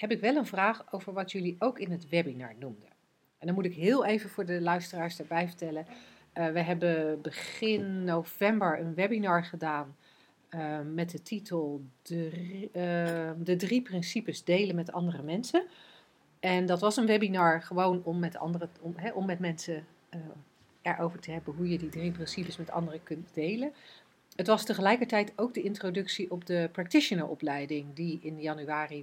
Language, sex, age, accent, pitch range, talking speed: Dutch, female, 40-59, Dutch, 165-195 Hz, 175 wpm